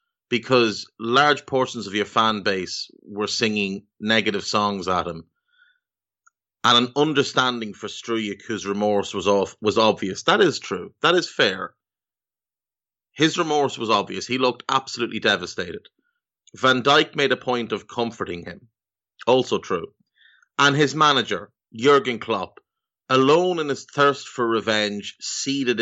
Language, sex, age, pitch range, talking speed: English, male, 30-49, 100-140 Hz, 140 wpm